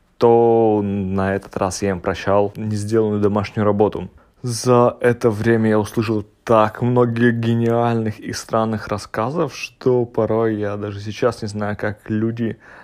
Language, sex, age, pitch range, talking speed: Russian, male, 20-39, 100-110 Hz, 145 wpm